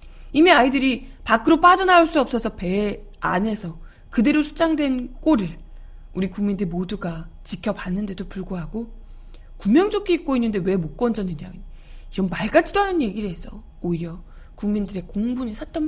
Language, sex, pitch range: Korean, female, 185-275 Hz